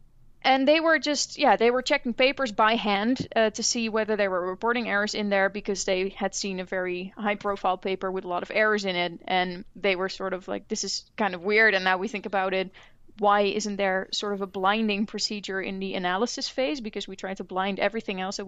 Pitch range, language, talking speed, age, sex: 195-225 Hz, English, 240 wpm, 20-39, female